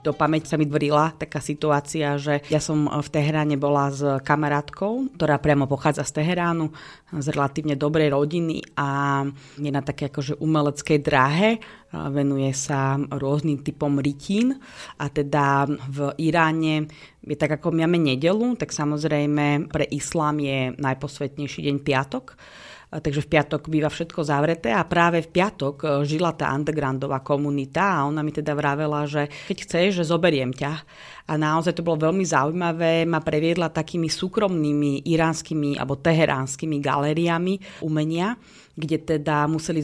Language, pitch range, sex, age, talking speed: Slovak, 145-160 Hz, female, 30-49, 145 wpm